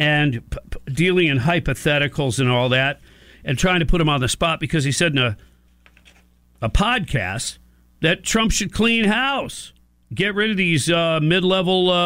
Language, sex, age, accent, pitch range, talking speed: English, male, 50-69, American, 125-185 Hz, 165 wpm